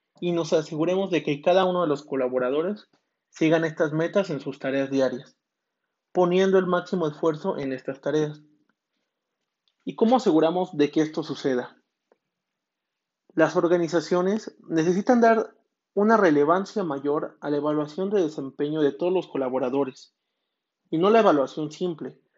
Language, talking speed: Spanish, 140 wpm